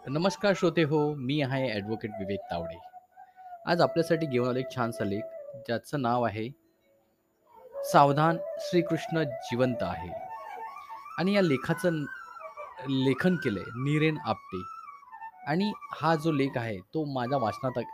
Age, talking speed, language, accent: 20-39, 125 wpm, Marathi, native